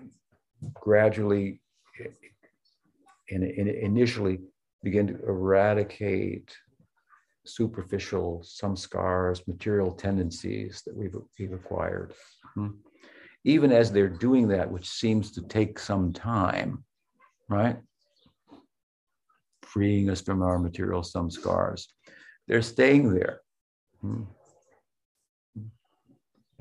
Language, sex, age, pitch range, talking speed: English, male, 50-69, 95-110 Hz, 90 wpm